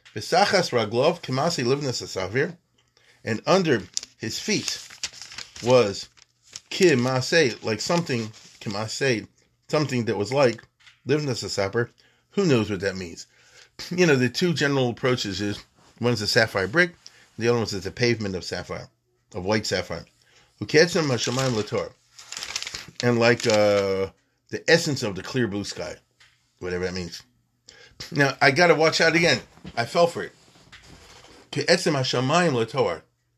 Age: 40-59